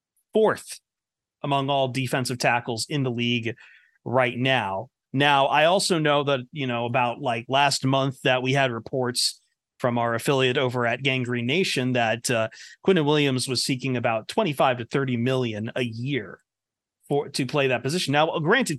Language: English